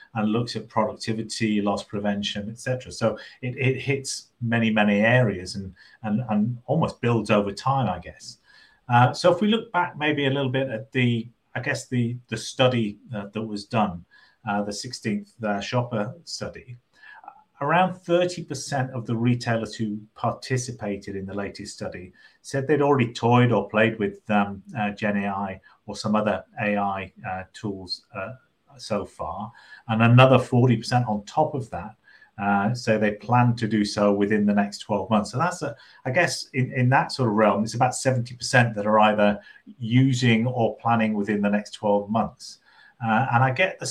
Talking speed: 180 wpm